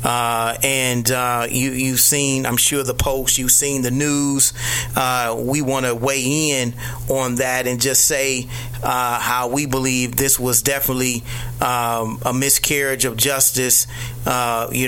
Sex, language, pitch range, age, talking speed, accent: male, English, 120-130 Hz, 30-49, 155 wpm, American